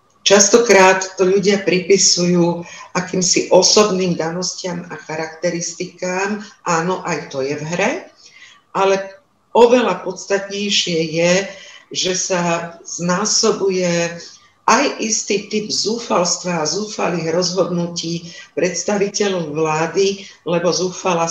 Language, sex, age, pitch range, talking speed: Slovak, female, 50-69, 170-205 Hz, 95 wpm